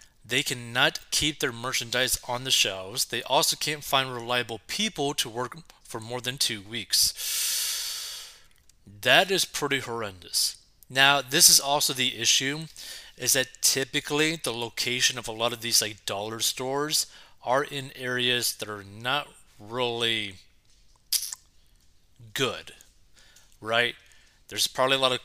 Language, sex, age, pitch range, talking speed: English, male, 30-49, 115-145 Hz, 135 wpm